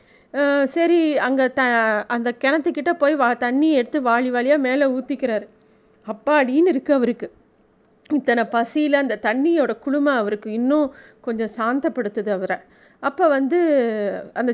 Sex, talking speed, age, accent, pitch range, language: female, 120 wpm, 30-49, native, 225-295 Hz, Tamil